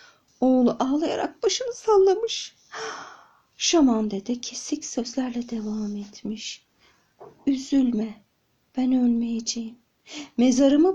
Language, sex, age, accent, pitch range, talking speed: Turkish, female, 50-69, native, 210-265 Hz, 75 wpm